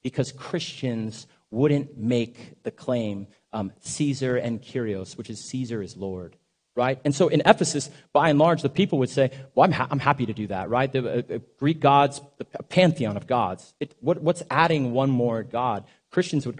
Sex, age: male, 30-49